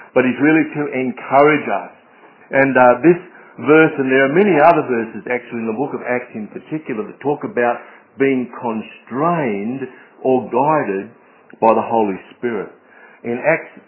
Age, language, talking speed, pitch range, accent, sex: 60-79, English, 160 wpm, 115-145 Hz, Australian, male